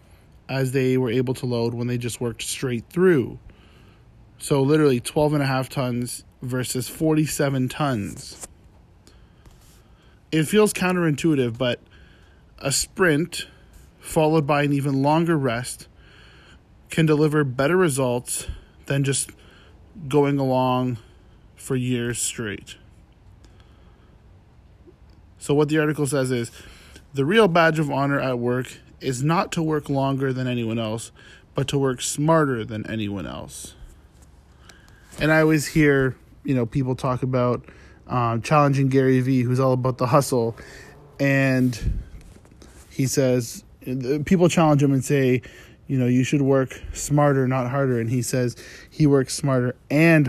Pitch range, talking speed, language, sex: 120-145 Hz, 135 wpm, English, male